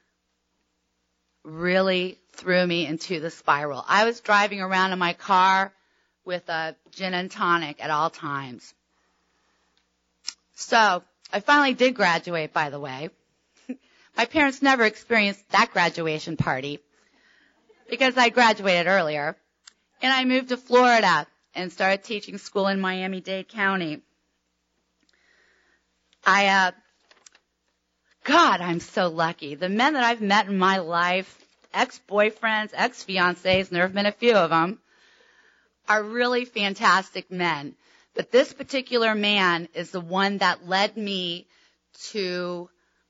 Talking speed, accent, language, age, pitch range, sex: 125 wpm, American, English, 30-49, 165-215 Hz, female